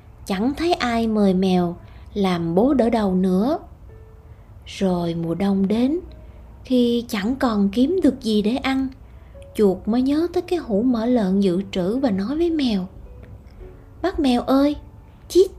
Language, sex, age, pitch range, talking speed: Vietnamese, female, 20-39, 195-280 Hz, 155 wpm